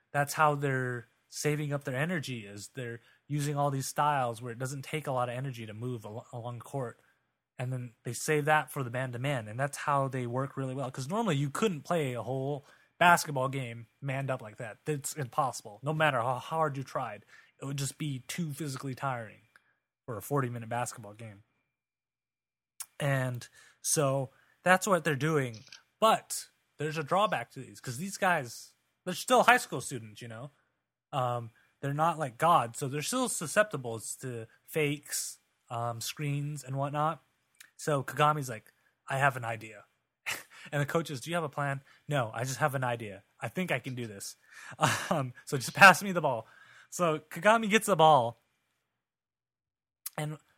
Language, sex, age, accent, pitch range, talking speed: English, male, 20-39, American, 125-155 Hz, 180 wpm